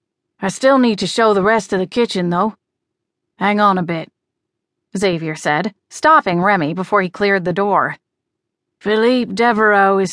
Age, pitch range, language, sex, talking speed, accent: 30-49, 180-225 Hz, English, female, 160 wpm, American